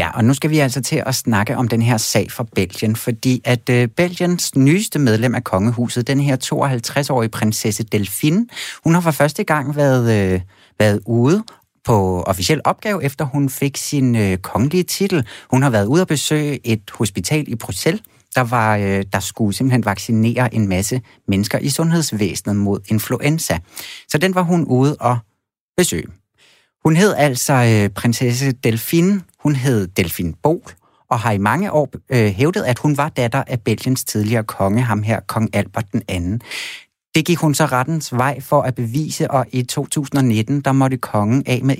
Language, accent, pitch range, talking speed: Danish, native, 110-145 Hz, 180 wpm